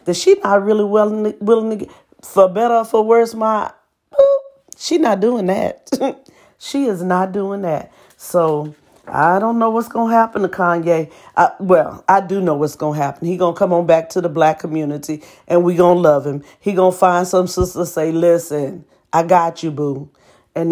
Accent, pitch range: American, 165-225 Hz